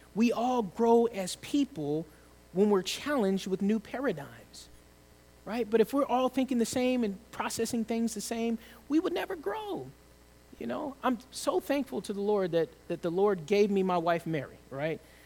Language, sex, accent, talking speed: English, male, American, 180 wpm